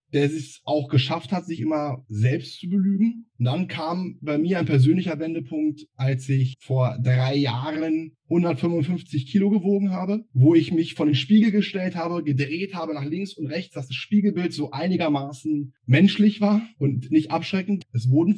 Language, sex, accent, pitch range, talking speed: German, male, German, 135-175 Hz, 170 wpm